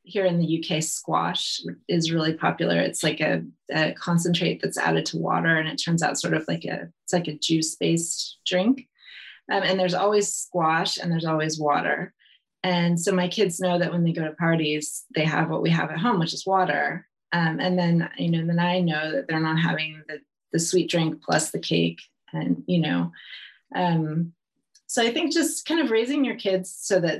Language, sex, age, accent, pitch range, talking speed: English, female, 30-49, American, 155-185 Hz, 205 wpm